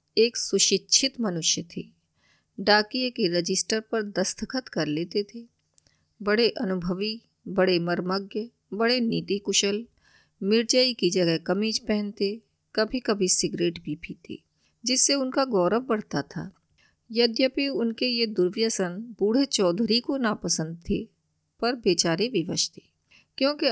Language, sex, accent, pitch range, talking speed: Hindi, female, native, 185-235 Hz, 120 wpm